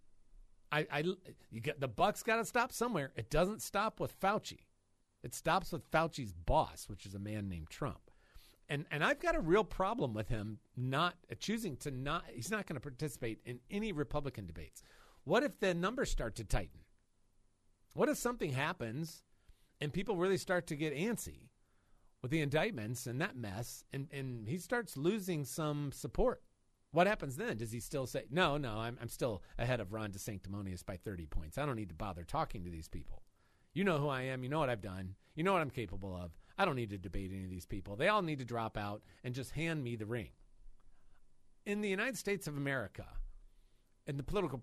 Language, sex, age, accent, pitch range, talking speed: English, male, 40-59, American, 100-160 Hz, 205 wpm